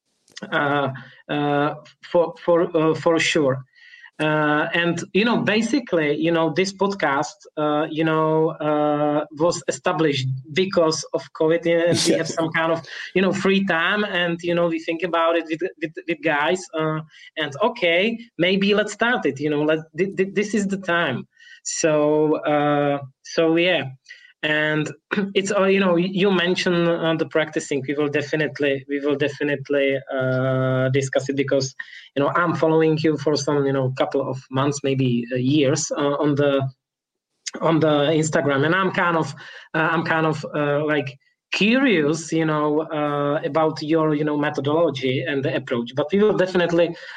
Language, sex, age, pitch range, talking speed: Czech, male, 20-39, 145-170 Hz, 170 wpm